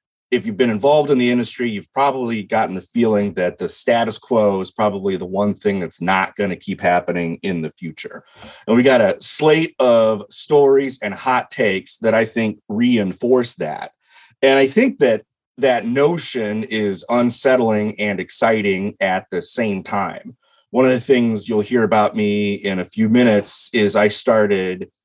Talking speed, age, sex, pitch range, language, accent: 175 wpm, 30-49, male, 105-135 Hz, English, American